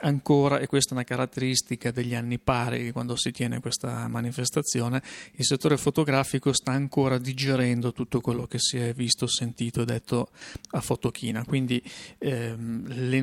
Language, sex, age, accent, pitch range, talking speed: Italian, male, 30-49, native, 125-140 Hz, 155 wpm